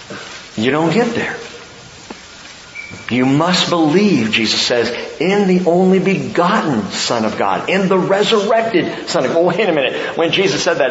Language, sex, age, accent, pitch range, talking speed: English, male, 50-69, American, 160-220 Hz, 160 wpm